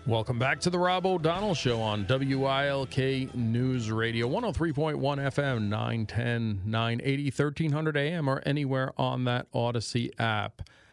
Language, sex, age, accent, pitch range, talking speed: English, male, 40-59, American, 115-135 Hz, 125 wpm